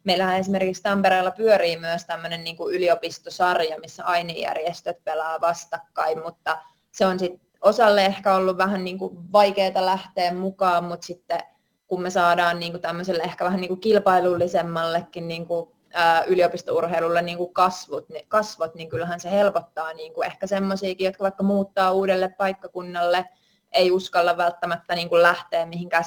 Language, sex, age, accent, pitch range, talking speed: Finnish, female, 20-39, native, 170-190 Hz, 115 wpm